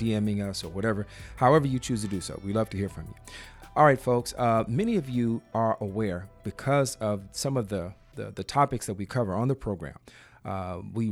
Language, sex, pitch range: English, male, 100-120 Hz